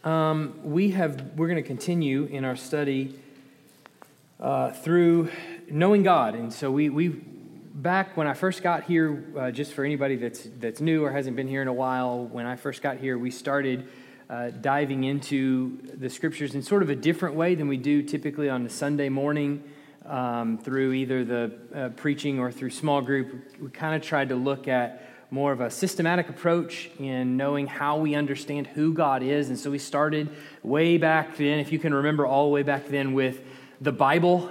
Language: English